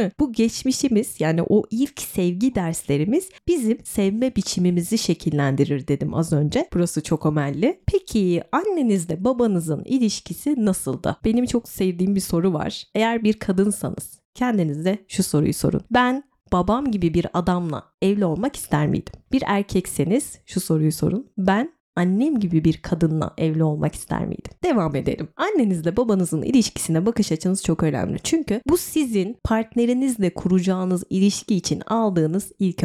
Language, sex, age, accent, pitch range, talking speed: Turkish, female, 30-49, native, 165-235 Hz, 140 wpm